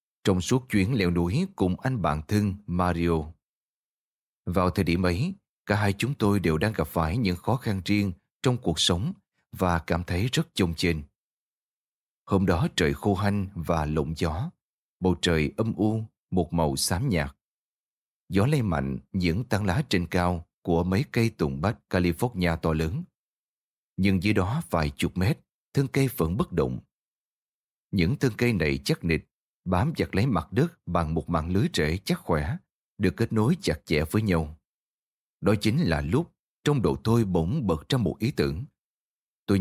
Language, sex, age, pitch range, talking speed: Vietnamese, male, 20-39, 85-110 Hz, 175 wpm